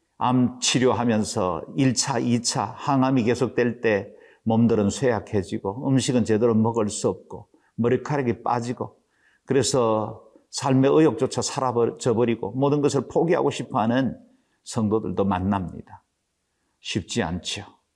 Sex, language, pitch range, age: male, Korean, 115-155 Hz, 50-69